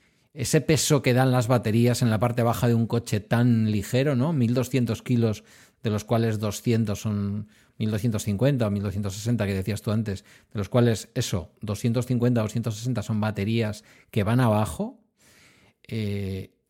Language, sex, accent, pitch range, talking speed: Spanish, male, Spanish, 110-145 Hz, 155 wpm